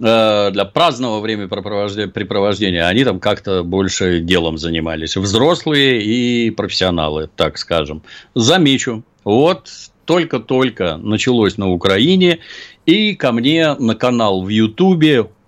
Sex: male